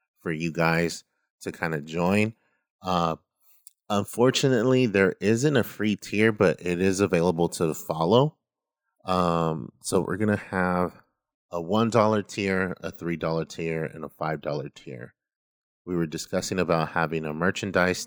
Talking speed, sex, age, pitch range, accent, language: 150 wpm, male, 30-49, 75-95 Hz, American, English